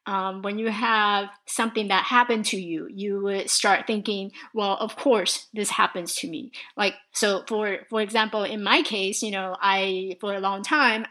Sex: female